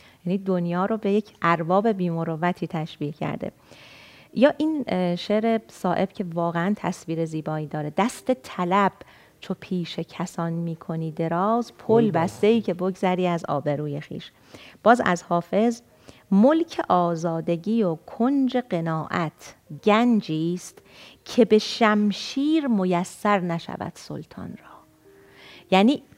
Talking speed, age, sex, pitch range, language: 115 wpm, 40-59, female, 165-215 Hz, Persian